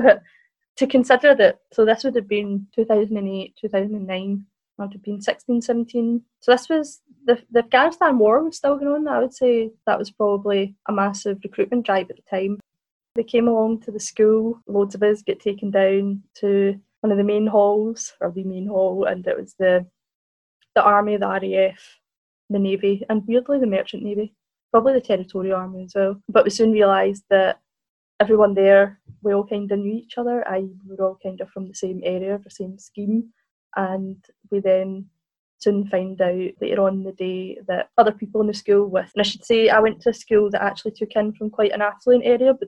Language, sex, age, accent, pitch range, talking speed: English, female, 20-39, British, 195-220 Hz, 205 wpm